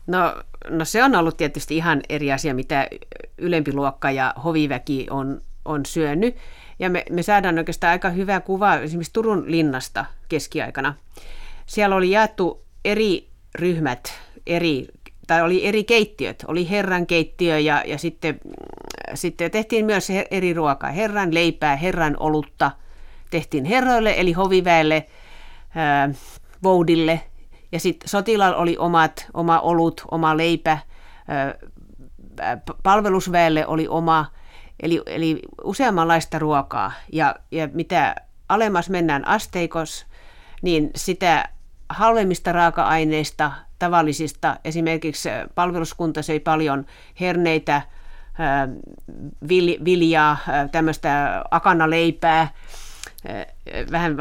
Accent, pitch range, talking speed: native, 150-180 Hz, 105 wpm